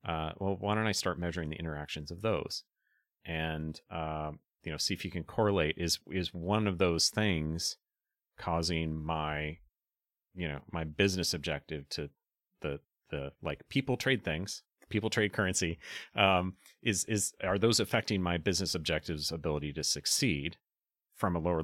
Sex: male